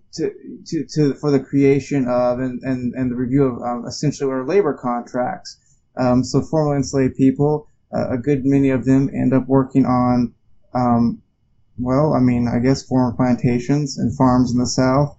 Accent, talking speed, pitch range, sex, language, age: American, 180 wpm, 120-140 Hz, male, English, 20-39